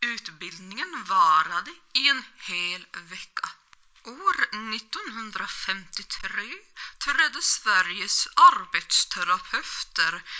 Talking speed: 65 wpm